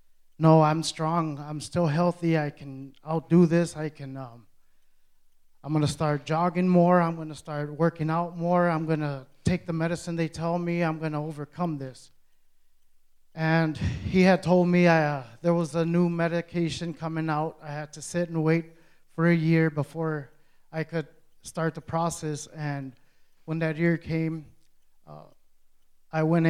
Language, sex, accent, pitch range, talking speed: English, male, American, 145-170 Hz, 175 wpm